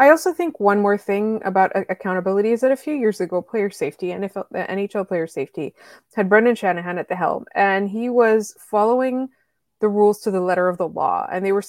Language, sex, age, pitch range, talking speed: English, female, 20-39, 185-240 Hz, 215 wpm